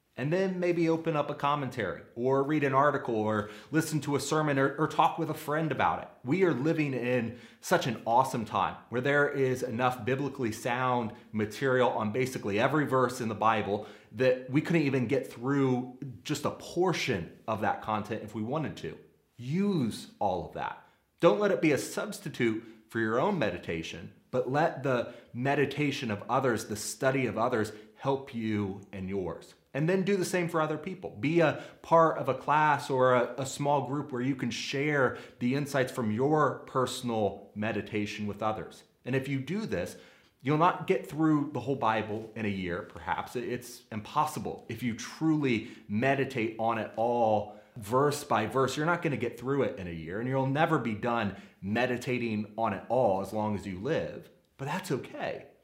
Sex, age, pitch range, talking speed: male, 30-49, 105-145 Hz, 190 wpm